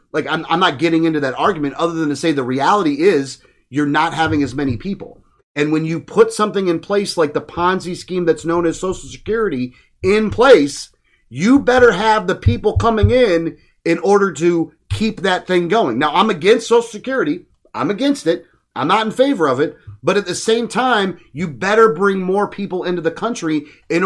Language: English